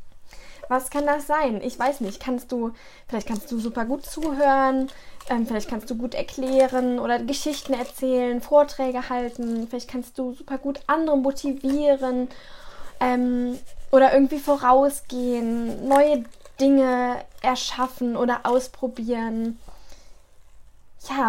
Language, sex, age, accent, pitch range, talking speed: German, female, 10-29, German, 235-275 Hz, 120 wpm